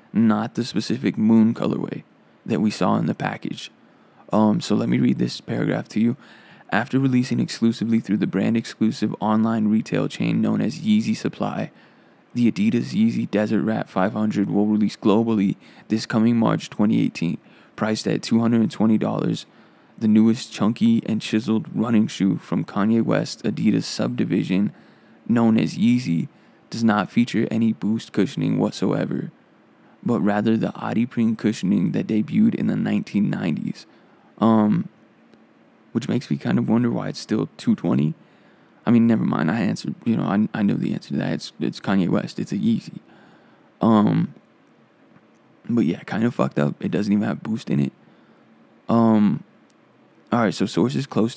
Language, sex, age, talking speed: English, male, 20-39, 155 wpm